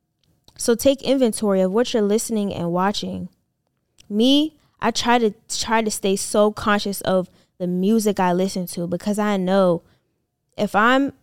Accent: American